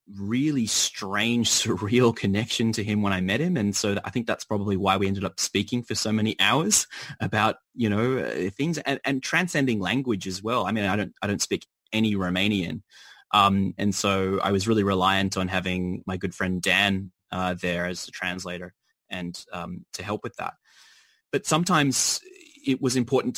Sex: male